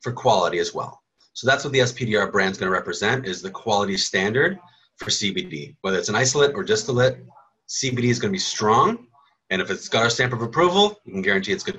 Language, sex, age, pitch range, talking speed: English, male, 30-49, 110-145 Hz, 215 wpm